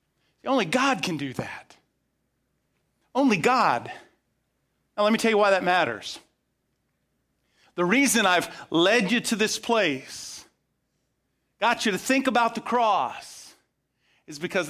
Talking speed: 130 wpm